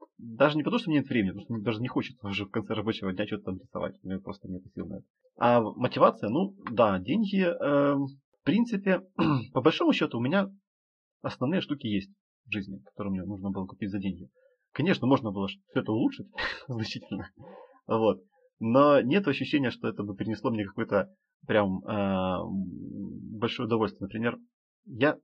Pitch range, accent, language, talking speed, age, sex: 105-165 Hz, native, Ukrainian, 185 wpm, 30-49, male